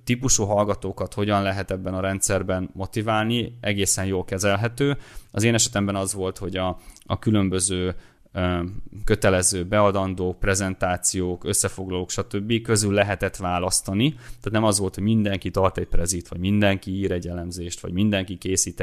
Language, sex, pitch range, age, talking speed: Hungarian, male, 95-110 Hz, 20-39, 145 wpm